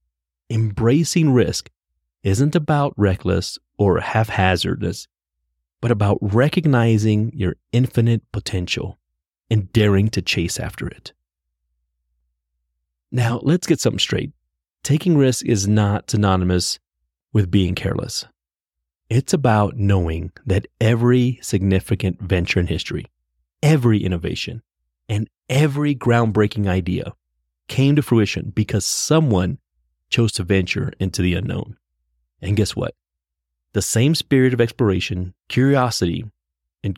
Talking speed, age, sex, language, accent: 110 wpm, 30-49, male, English, American